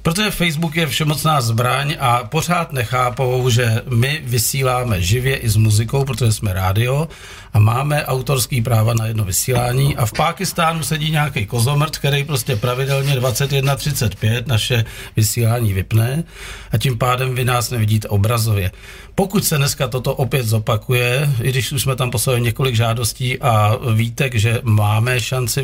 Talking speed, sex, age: 150 wpm, male, 50-69